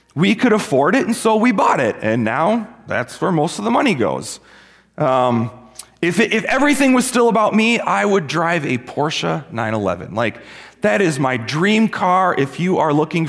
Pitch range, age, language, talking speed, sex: 155-220 Hz, 30-49, English, 195 wpm, male